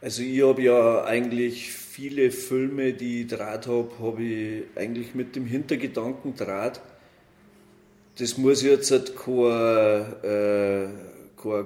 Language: German